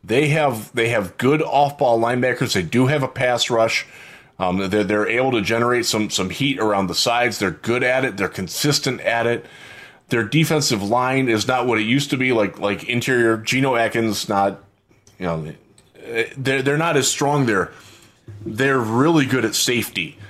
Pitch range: 105-125 Hz